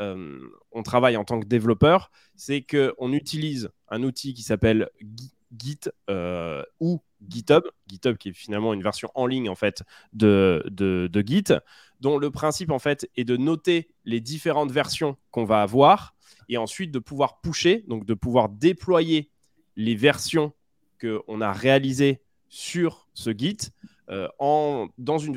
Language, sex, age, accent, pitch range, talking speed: French, male, 20-39, French, 110-145 Hz, 160 wpm